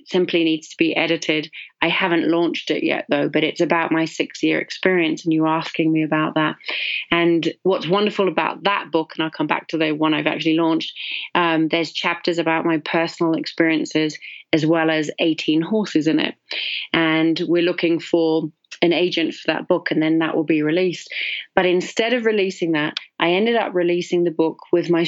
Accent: British